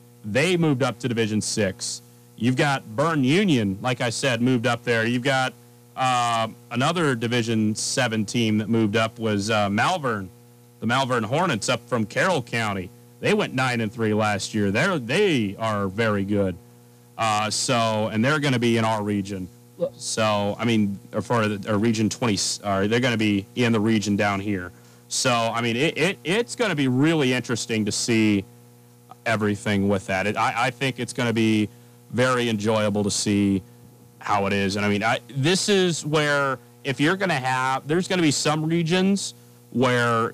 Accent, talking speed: American, 185 wpm